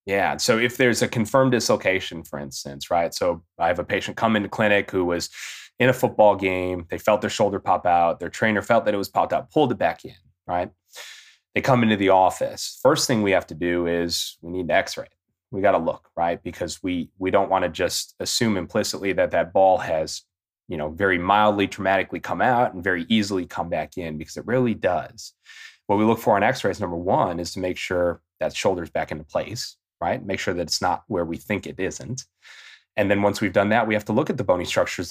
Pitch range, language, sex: 85-105 Hz, English, male